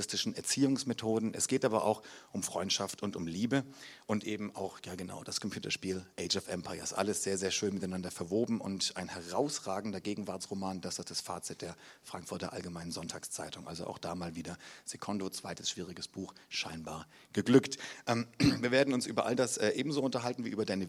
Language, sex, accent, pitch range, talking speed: German, male, German, 95-130 Hz, 170 wpm